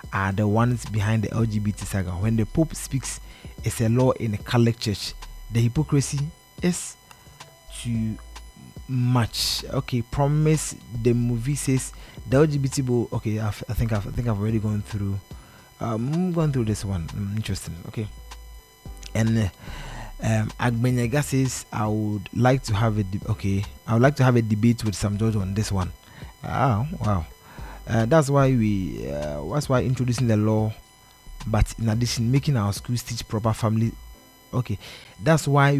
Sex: male